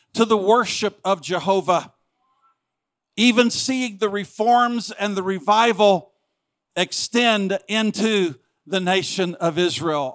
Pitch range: 180-220 Hz